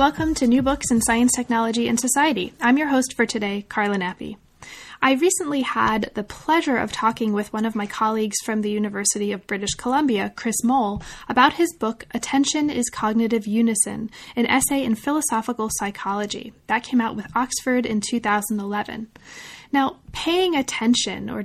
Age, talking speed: 10-29, 165 wpm